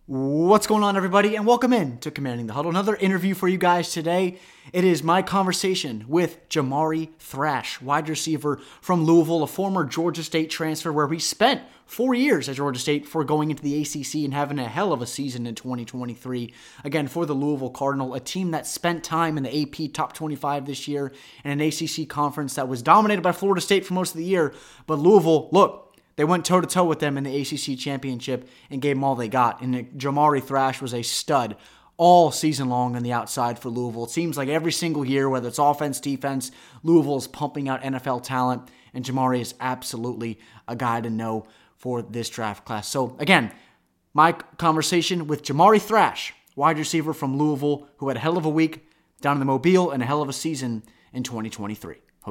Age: 20-39